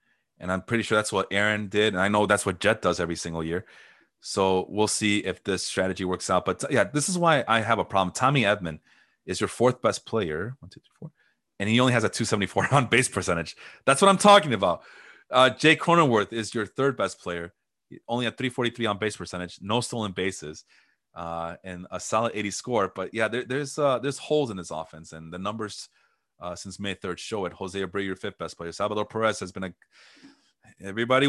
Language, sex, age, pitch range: English, male, 30-49, 95-135 Hz